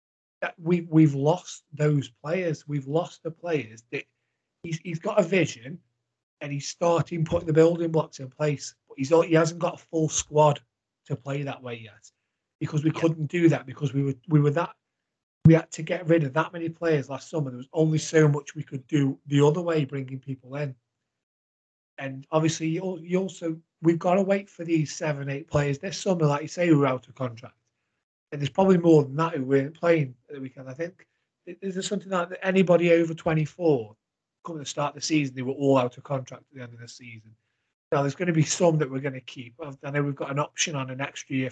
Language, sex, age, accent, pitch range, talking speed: English, male, 30-49, British, 130-165 Hz, 225 wpm